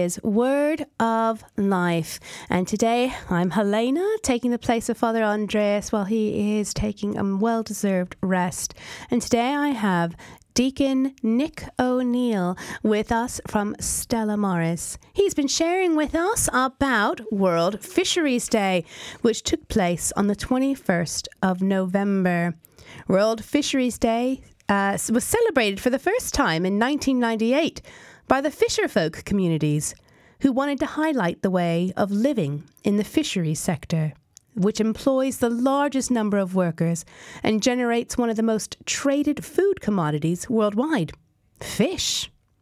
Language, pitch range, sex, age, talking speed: English, 195-275 Hz, female, 30-49, 135 wpm